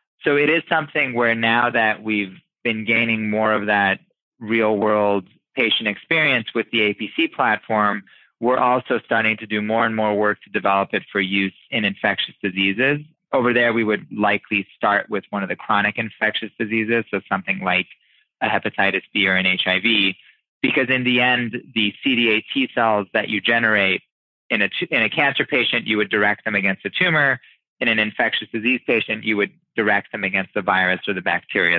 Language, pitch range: English, 105-125 Hz